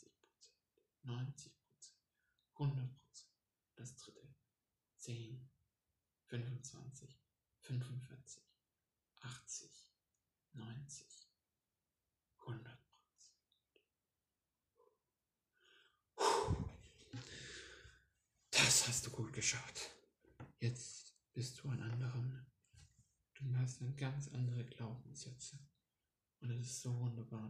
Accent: German